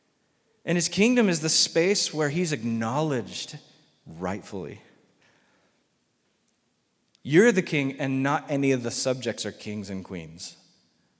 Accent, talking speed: American, 125 wpm